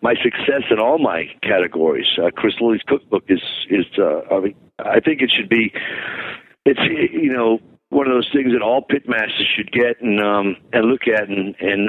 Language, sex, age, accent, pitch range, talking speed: English, male, 50-69, American, 100-120 Hz, 200 wpm